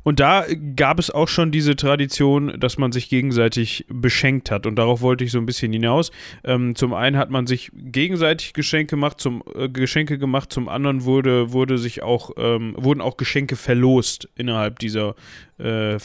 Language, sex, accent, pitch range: German, male, German, 120-145 Hz